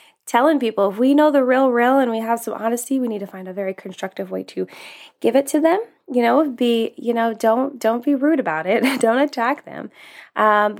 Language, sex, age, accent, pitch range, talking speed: English, female, 10-29, American, 210-270 Hz, 230 wpm